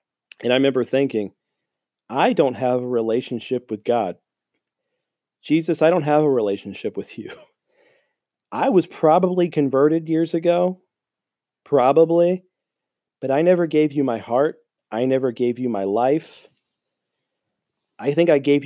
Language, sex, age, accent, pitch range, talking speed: English, male, 40-59, American, 125-155 Hz, 140 wpm